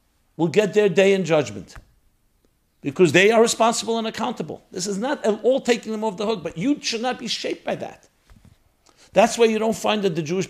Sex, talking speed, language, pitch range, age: male, 215 wpm, English, 125-195 Hz, 50-69